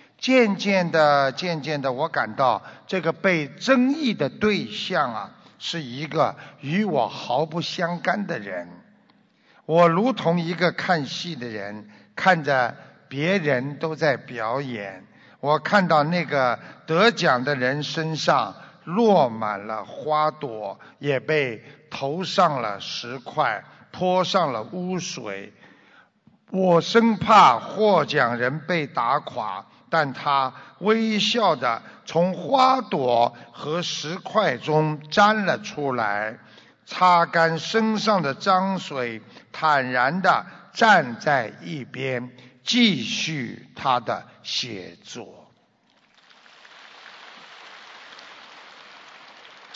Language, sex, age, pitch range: Chinese, male, 60-79, 145-205 Hz